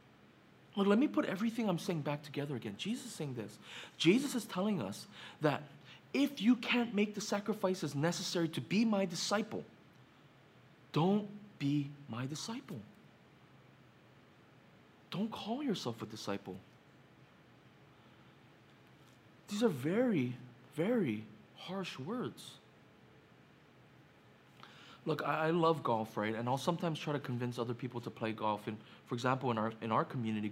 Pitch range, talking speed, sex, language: 115-170 Hz, 135 wpm, male, English